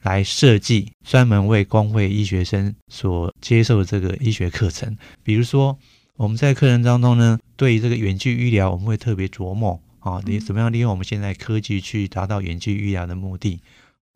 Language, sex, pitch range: Chinese, male, 95-115 Hz